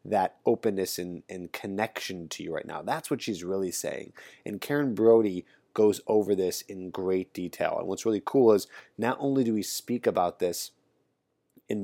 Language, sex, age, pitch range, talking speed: English, male, 20-39, 90-110 Hz, 180 wpm